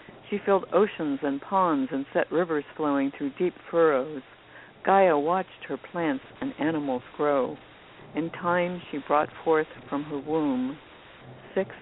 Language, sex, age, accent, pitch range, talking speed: English, female, 60-79, American, 145-175 Hz, 140 wpm